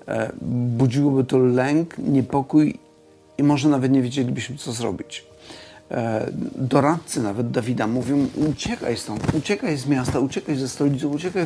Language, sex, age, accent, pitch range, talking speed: Polish, male, 50-69, native, 125-145 Hz, 125 wpm